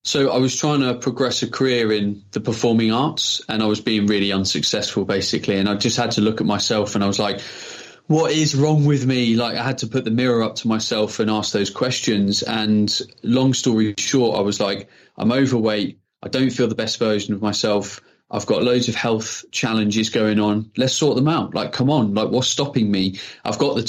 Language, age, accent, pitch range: English, 20-39, British, 110-130 Hz